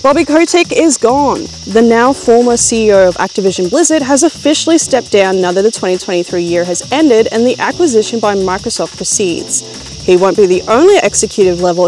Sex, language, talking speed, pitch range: female, English, 175 wpm, 195-305 Hz